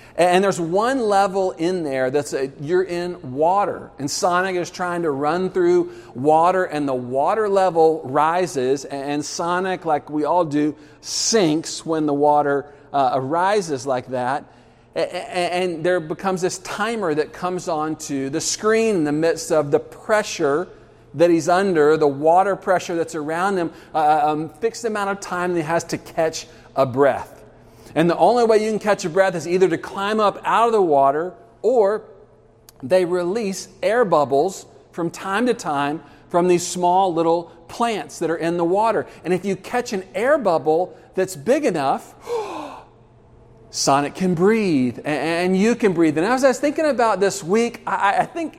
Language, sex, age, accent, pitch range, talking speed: English, male, 40-59, American, 150-195 Hz, 175 wpm